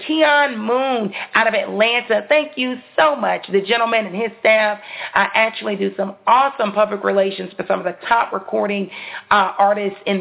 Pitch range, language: 200-260 Hz, English